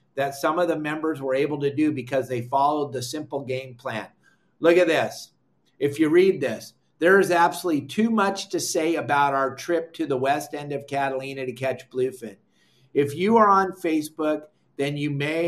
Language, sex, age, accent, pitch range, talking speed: English, male, 50-69, American, 130-160 Hz, 195 wpm